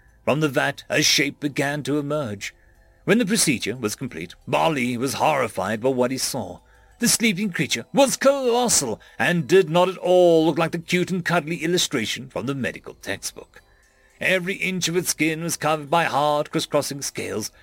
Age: 40-59